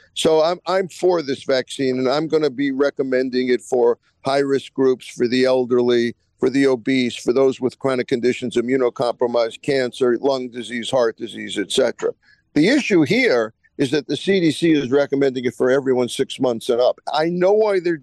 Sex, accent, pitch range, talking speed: male, American, 130-160 Hz, 185 wpm